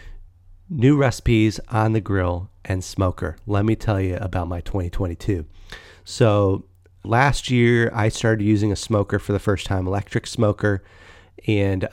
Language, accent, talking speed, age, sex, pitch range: English, American, 145 wpm, 30-49, male, 90-110 Hz